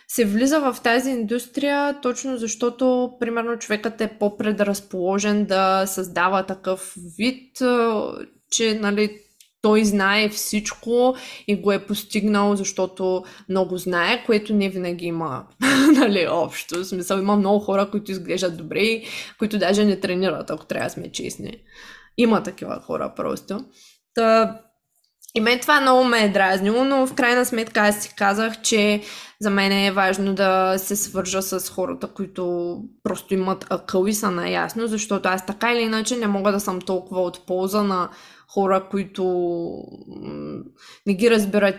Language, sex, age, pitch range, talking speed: Bulgarian, female, 20-39, 185-225 Hz, 150 wpm